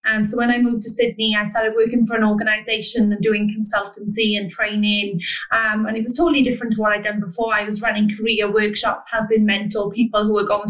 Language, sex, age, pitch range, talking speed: English, female, 20-39, 210-245 Hz, 230 wpm